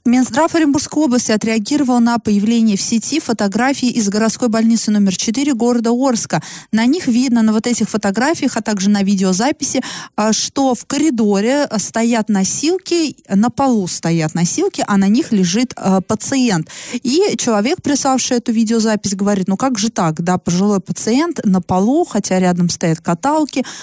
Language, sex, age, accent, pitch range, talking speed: Russian, female, 20-39, native, 190-245 Hz, 150 wpm